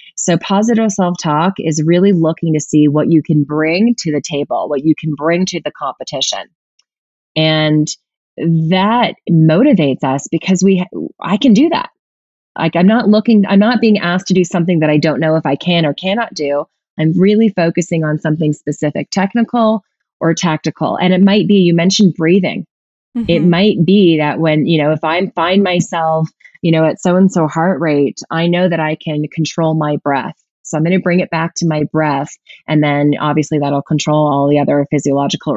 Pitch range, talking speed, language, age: 155-195 Hz, 195 wpm, English, 20-39